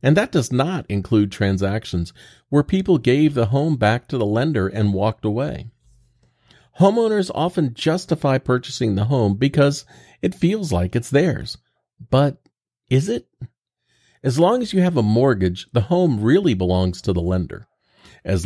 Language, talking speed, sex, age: English, 155 wpm, male, 40-59